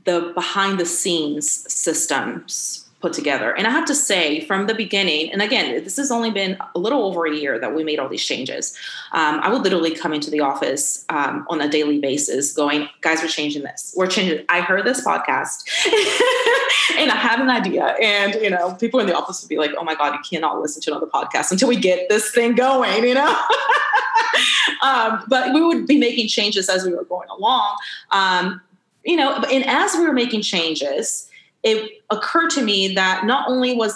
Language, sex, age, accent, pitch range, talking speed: English, female, 20-39, American, 165-240 Hz, 205 wpm